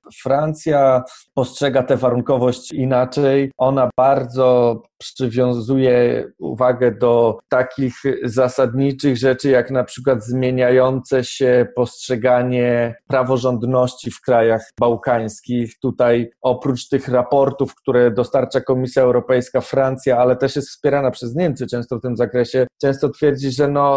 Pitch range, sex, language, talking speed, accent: 120-140 Hz, male, Polish, 115 wpm, native